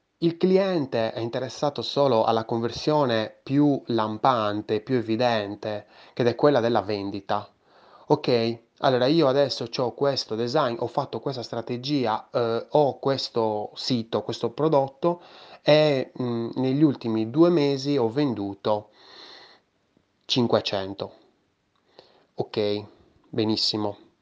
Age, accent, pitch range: 20-39, native, 110-140 Hz